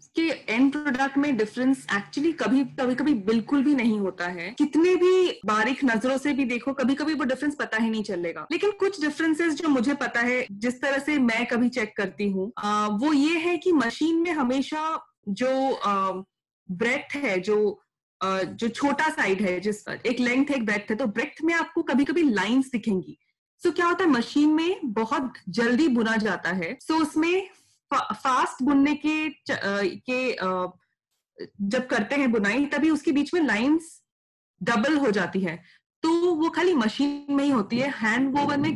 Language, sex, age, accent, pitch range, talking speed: Hindi, female, 20-39, native, 220-300 Hz, 185 wpm